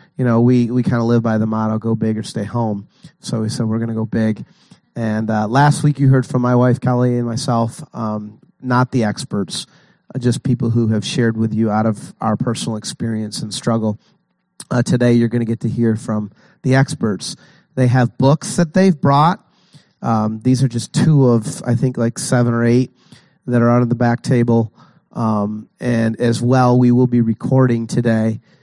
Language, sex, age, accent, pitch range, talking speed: English, male, 30-49, American, 115-135 Hz, 205 wpm